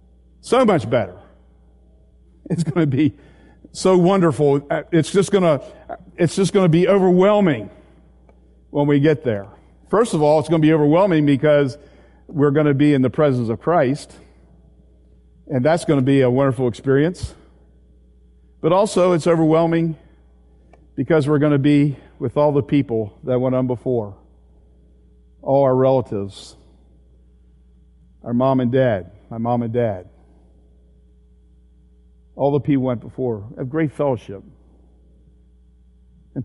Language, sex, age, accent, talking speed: English, male, 50-69, American, 140 wpm